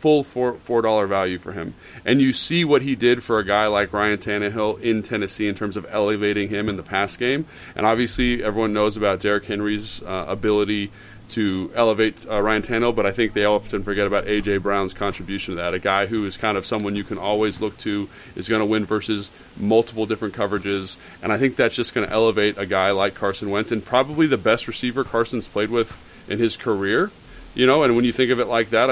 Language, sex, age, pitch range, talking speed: English, male, 30-49, 100-115 Hz, 225 wpm